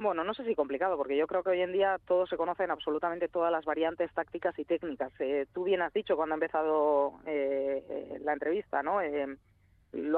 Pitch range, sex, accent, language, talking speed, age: 150-180 Hz, female, Spanish, Spanish, 210 wpm, 20-39